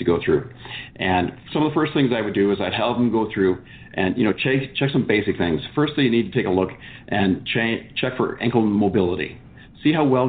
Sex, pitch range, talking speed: male, 95-125 Hz, 250 wpm